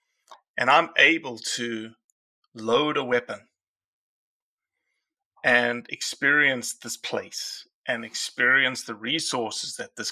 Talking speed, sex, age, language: 100 wpm, male, 30-49, English